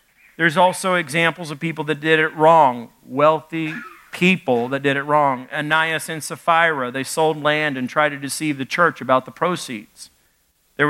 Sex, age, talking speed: male, 50-69, 170 wpm